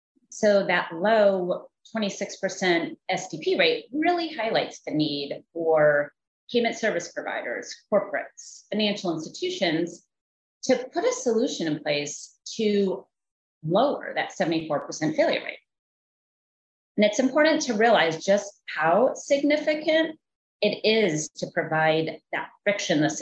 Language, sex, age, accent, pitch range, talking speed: English, female, 30-49, American, 165-250 Hz, 110 wpm